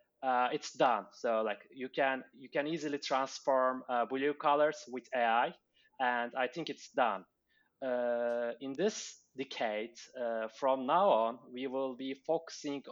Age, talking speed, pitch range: 20-39, 155 wpm, 120-150 Hz